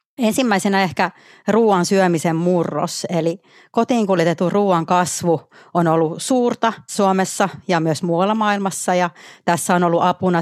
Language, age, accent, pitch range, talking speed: Finnish, 30-49, native, 165-190 Hz, 130 wpm